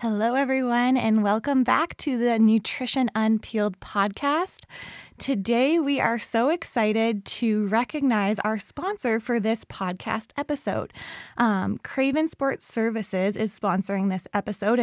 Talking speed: 125 wpm